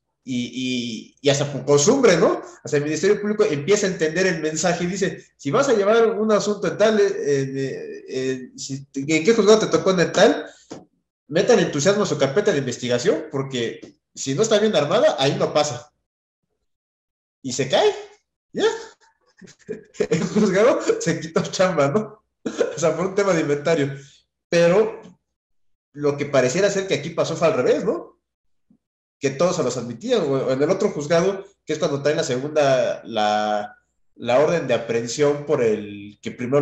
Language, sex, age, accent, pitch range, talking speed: Spanish, male, 30-49, Mexican, 135-200 Hz, 180 wpm